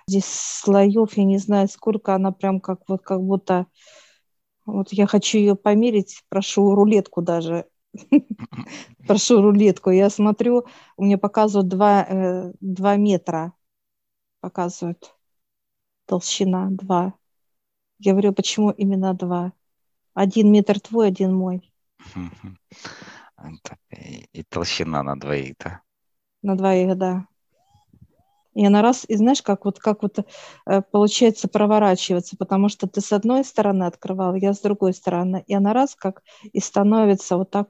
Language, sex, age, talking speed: Russian, female, 40-59, 125 wpm